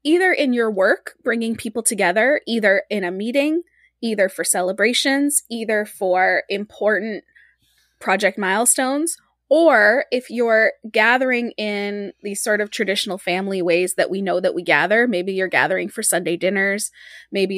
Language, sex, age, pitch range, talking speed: English, female, 20-39, 190-245 Hz, 145 wpm